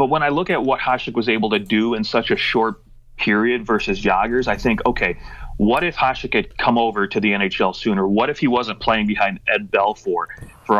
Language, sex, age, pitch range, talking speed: English, male, 30-49, 105-120 Hz, 220 wpm